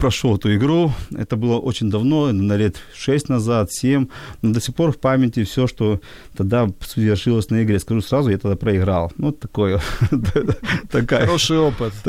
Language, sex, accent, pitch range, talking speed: Ukrainian, male, native, 110-140 Hz, 175 wpm